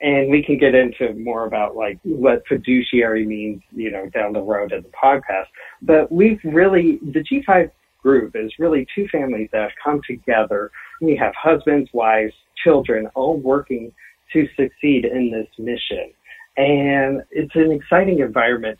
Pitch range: 115-155 Hz